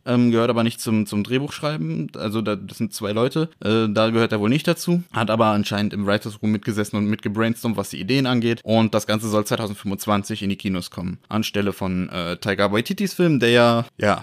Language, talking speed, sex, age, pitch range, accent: German, 205 wpm, male, 20-39, 110-135 Hz, German